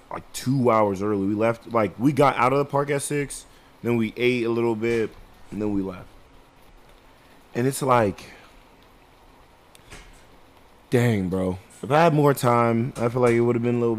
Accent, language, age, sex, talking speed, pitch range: American, English, 20-39, male, 190 wpm, 105-140 Hz